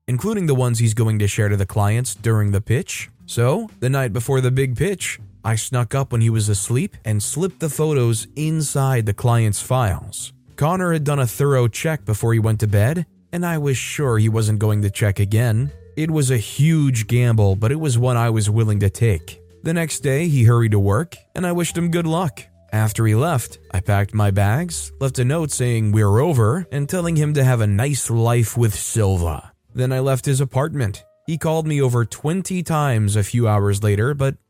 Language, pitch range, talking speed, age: English, 110-150 Hz, 210 wpm, 20-39